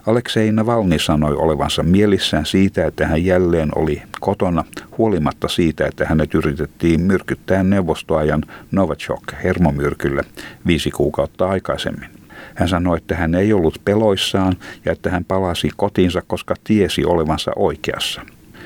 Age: 60-79